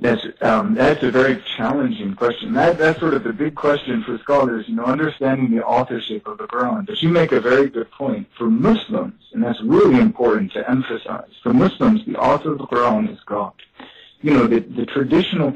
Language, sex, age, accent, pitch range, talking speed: English, male, 50-69, American, 125-190 Hz, 205 wpm